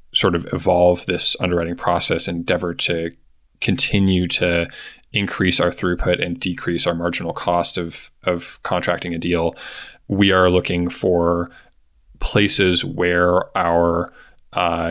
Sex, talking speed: male, 130 wpm